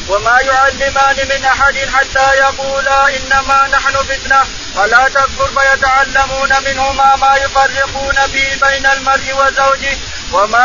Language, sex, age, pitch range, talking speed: Arabic, male, 20-39, 270-275 Hz, 120 wpm